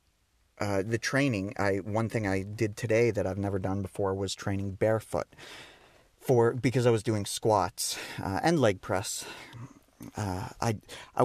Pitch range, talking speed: 100-125 Hz, 160 wpm